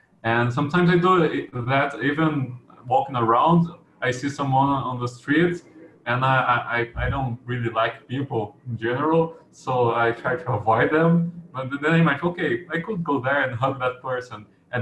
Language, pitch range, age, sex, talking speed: English, 120-145 Hz, 20-39, male, 180 wpm